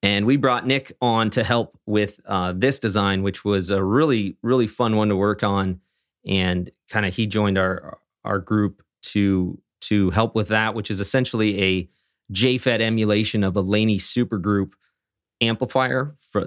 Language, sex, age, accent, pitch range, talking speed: English, male, 30-49, American, 100-115 Hz, 170 wpm